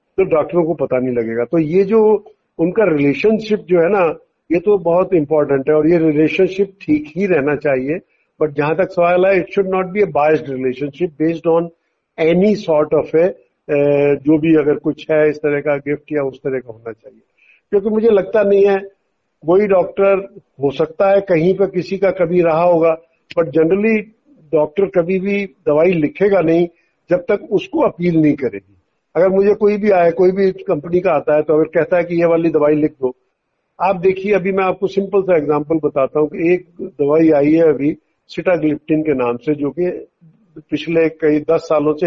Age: 50-69